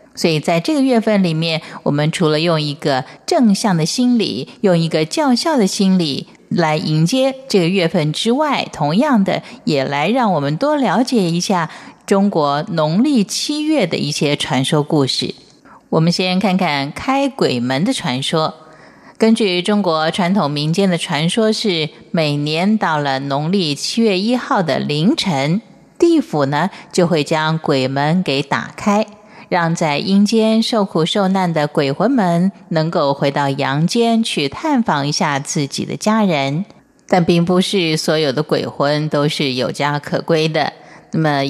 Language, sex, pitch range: Chinese, female, 150-220 Hz